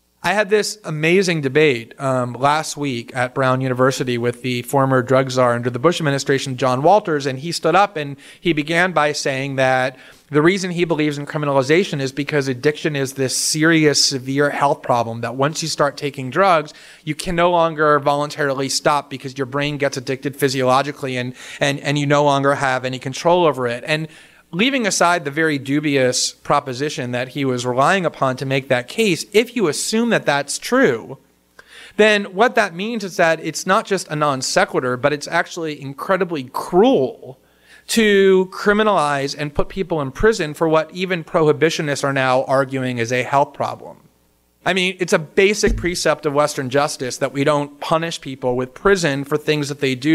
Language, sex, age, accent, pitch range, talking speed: English, male, 30-49, American, 135-165 Hz, 185 wpm